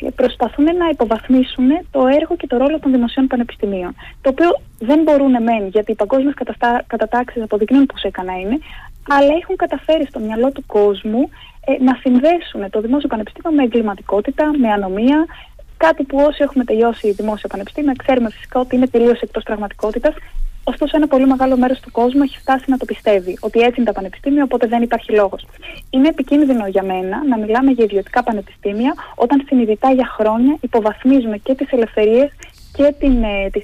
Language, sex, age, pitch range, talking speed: Greek, female, 20-39, 225-280 Hz, 170 wpm